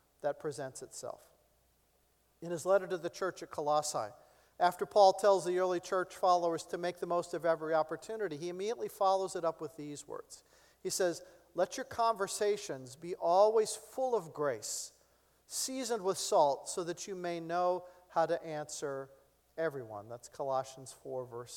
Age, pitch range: 50-69, 160-215 Hz